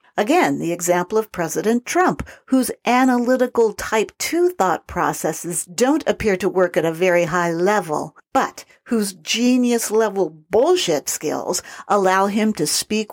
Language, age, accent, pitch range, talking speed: English, 50-69, American, 175-250 Hz, 135 wpm